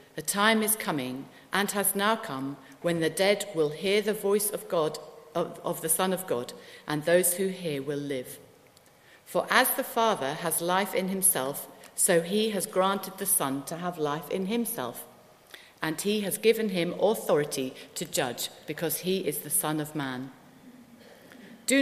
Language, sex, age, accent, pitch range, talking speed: English, female, 50-69, British, 150-195 Hz, 175 wpm